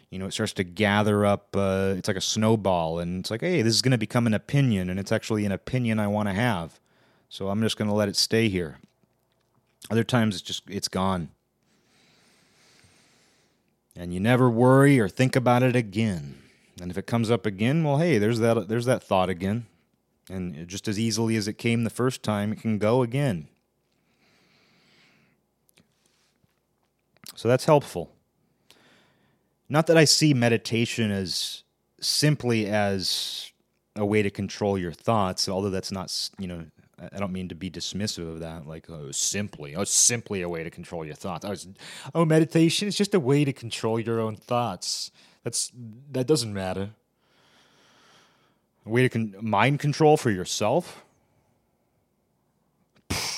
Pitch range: 95-125 Hz